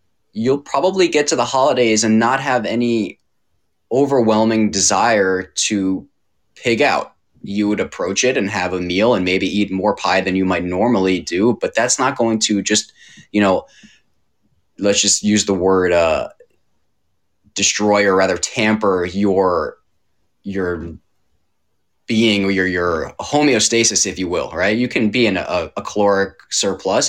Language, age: English, 20-39